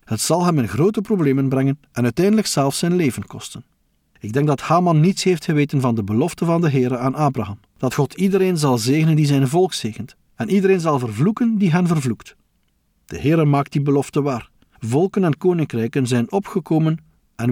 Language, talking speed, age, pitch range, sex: Dutch, 190 wpm, 50-69, 120-175 Hz, male